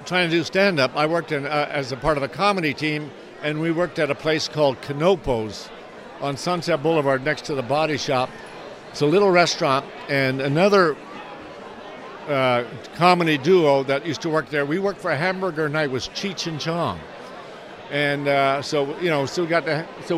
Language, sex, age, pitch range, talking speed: English, male, 60-79, 135-165 Hz, 195 wpm